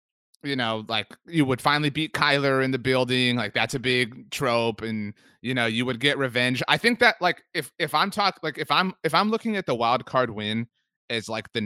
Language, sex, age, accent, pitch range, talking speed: English, male, 30-49, American, 115-150 Hz, 230 wpm